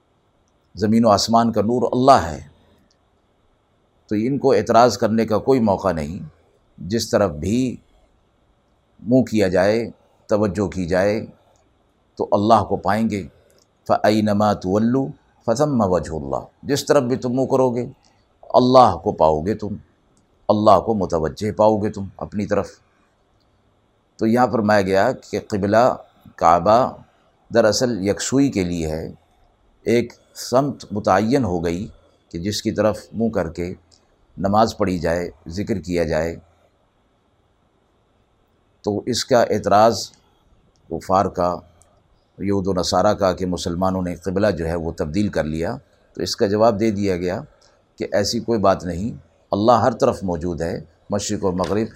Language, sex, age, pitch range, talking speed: Urdu, male, 50-69, 90-110 Hz, 145 wpm